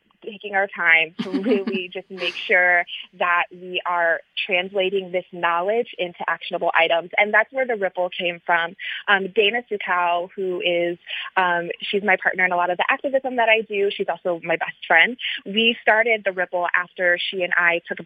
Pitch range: 175-205 Hz